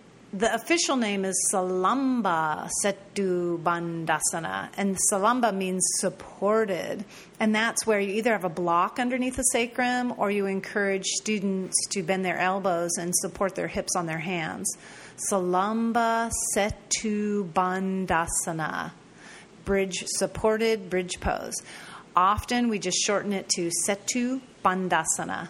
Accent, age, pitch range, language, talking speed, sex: American, 40-59, 180-220 Hz, English, 120 wpm, female